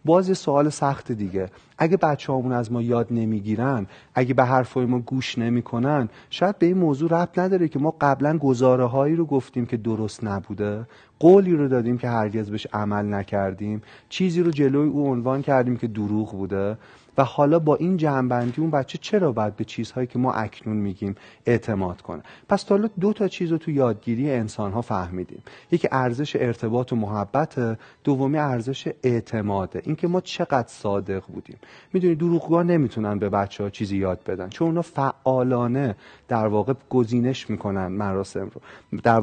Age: 30-49